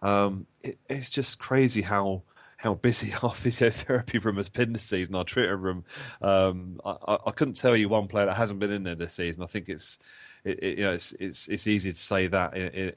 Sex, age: male, 30-49